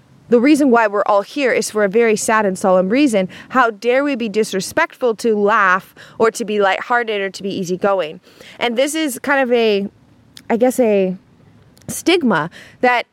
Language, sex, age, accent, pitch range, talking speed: English, female, 20-39, American, 200-260 Hz, 185 wpm